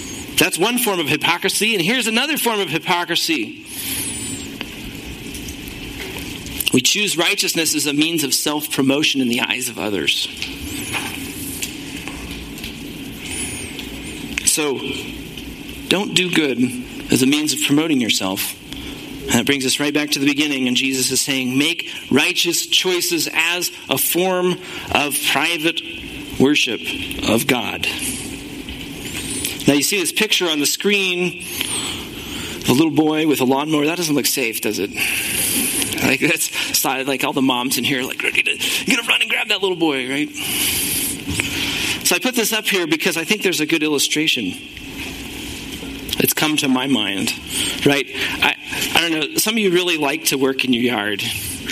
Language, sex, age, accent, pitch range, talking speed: English, male, 40-59, American, 140-195 Hz, 155 wpm